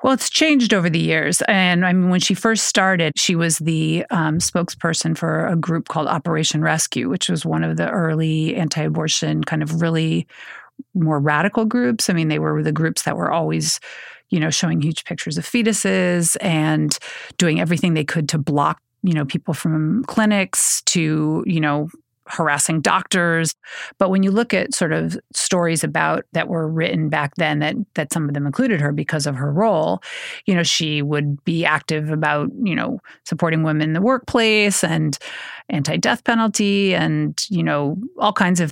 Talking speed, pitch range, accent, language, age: 185 wpm, 155-185 Hz, American, English, 40-59